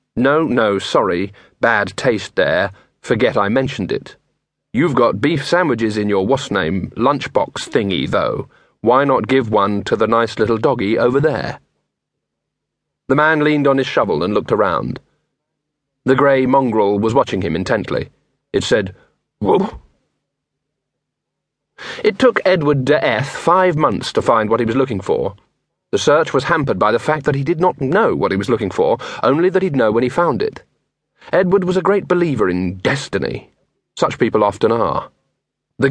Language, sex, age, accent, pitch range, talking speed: English, male, 40-59, British, 120-155 Hz, 170 wpm